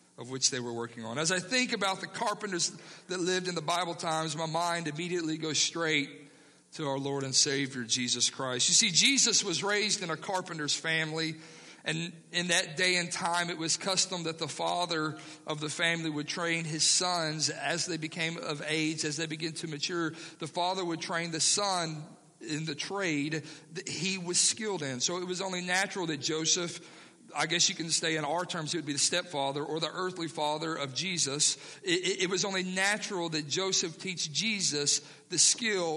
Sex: male